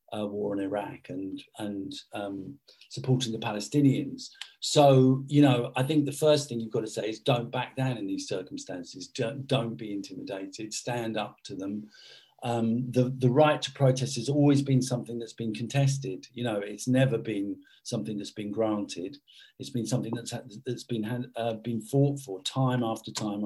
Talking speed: 180 wpm